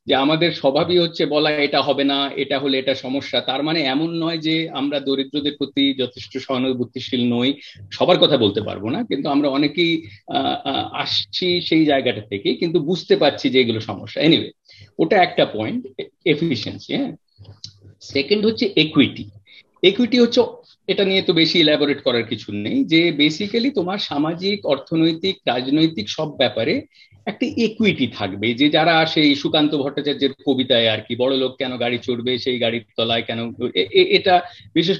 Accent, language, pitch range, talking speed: native, Bengali, 125-165 Hz, 70 wpm